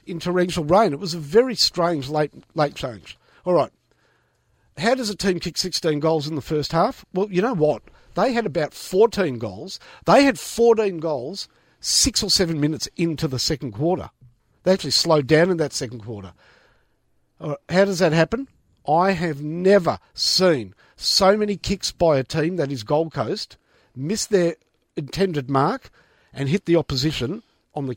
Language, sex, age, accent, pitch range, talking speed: English, male, 50-69, Australian, 150-195 Hz, 175 wpm